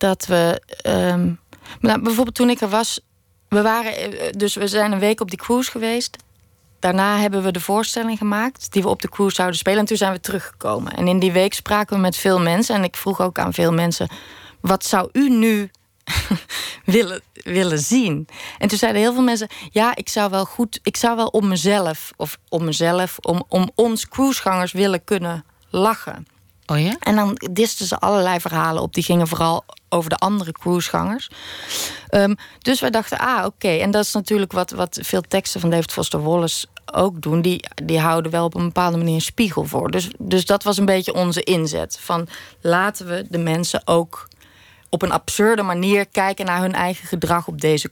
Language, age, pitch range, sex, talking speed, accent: Dutch, 20-39, 165-210 Hz, female, 200 wpm, Dutch